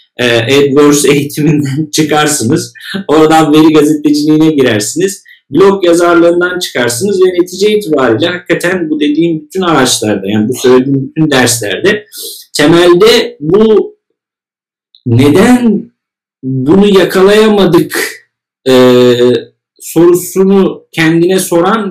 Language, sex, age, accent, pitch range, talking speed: Turkish, male, 50-69, native, 140-195 Hz, 90 wpm